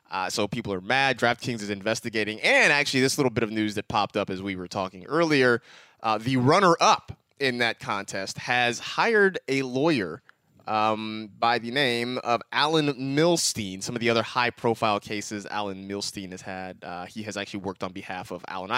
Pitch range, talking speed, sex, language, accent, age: 105-150 Hz, 190 wpm, male, English, American, 20-39